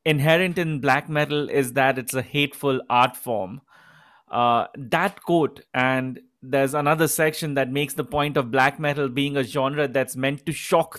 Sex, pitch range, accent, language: male, 145-195 Hz, Indian, English